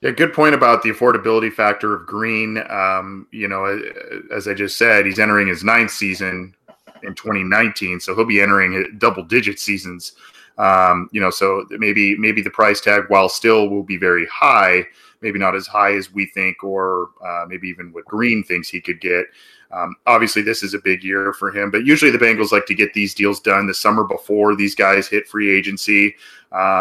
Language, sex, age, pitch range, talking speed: English, male, 20-39, 100-115 Hz, 200 wpm